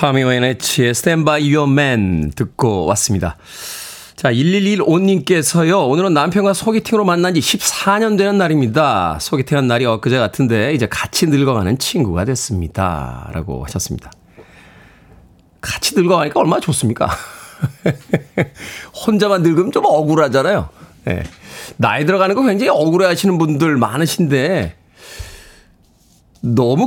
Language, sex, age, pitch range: Korean, male, 40-59, 130-190 Hz